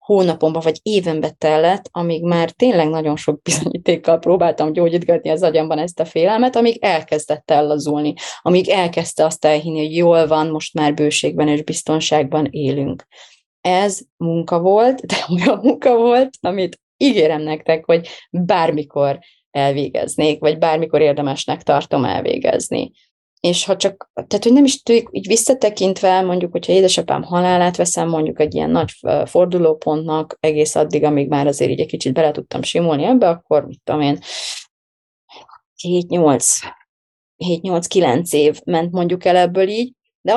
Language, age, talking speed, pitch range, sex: Hungarian, 30-49, 140 wpm, 150-185 Hz, female